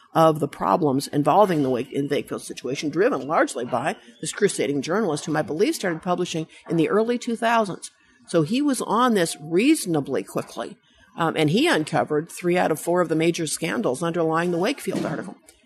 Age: 50-69